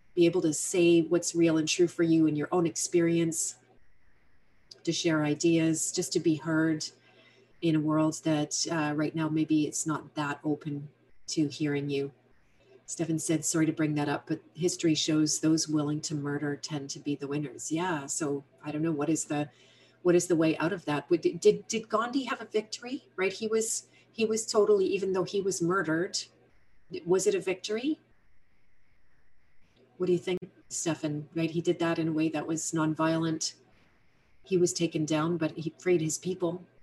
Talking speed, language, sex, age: 185 wpm, English, female, 40-59